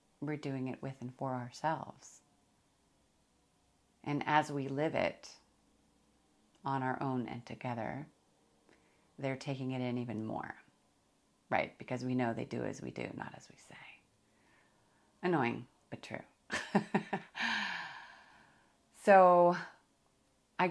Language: English